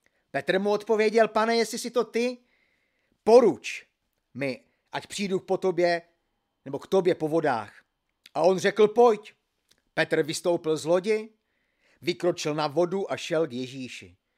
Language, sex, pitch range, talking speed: Czech, male, 160-215 Hz, 140 wpm